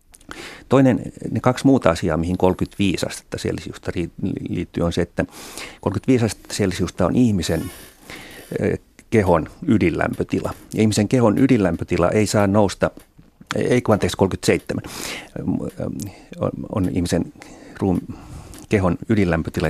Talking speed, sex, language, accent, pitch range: 105 wpm, male, Finnish, native, 85-110 Hz